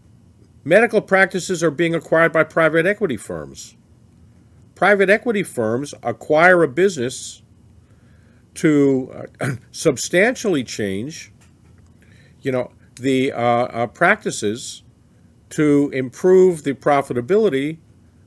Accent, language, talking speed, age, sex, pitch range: American, English, 95 wpm, 50-69, male, 115-145 Hz